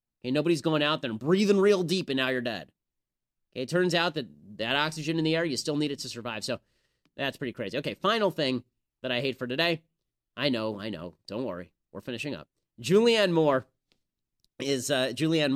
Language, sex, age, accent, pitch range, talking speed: English, male, 30-49, American, 115-150 Hz, 205 wpm